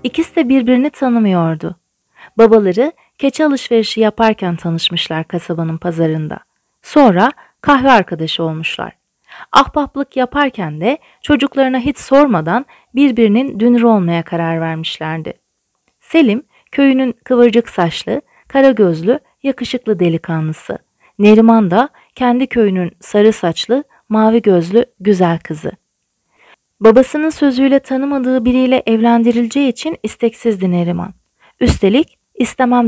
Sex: female